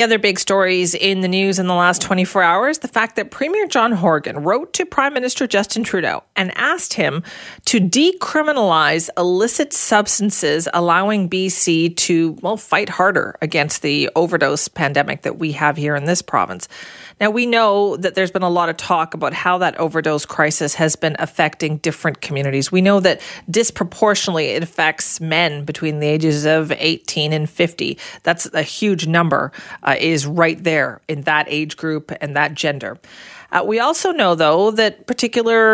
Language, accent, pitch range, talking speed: English, American, 160-210 Hz, 175 wpm